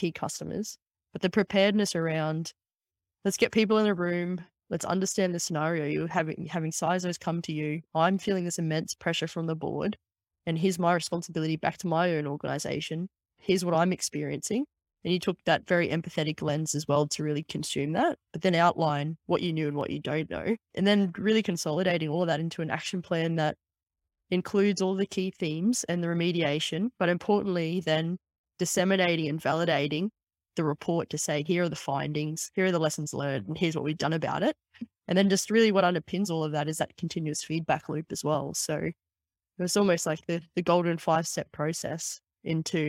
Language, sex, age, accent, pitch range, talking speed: English, female, 10-29, Australian, 155-185 Hz, 195 wpm